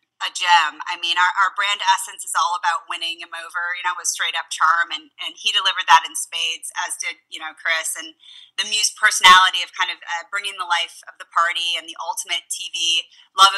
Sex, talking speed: female, 225 wpm